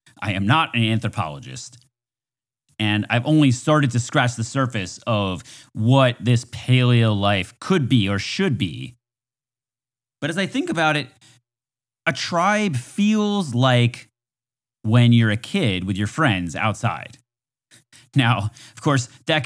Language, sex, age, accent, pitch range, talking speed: English, male, 30-49, American, 115-135 Hz, 140 wpm